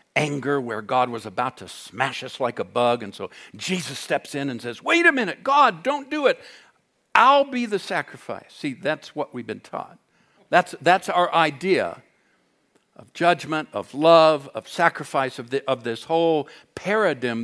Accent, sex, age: American, male, 60-79